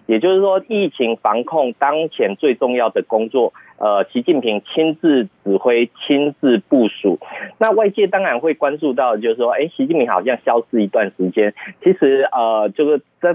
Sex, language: male, Chinese